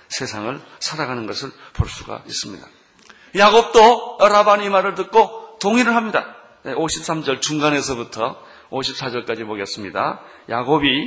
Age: 40-59